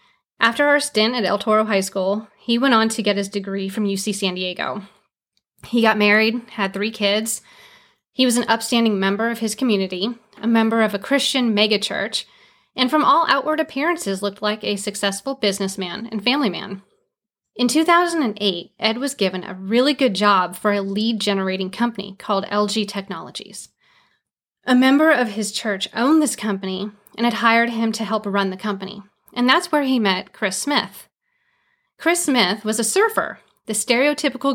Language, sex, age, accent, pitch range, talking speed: English, female, 30-49, American, 200-250 Hz, 175 wpm